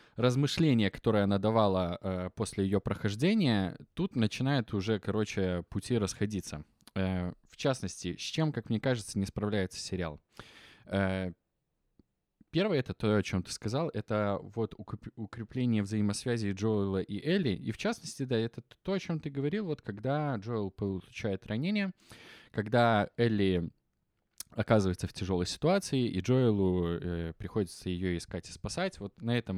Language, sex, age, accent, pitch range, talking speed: Russian, male, 20-39, native, 95-120 Hz, 140 wpm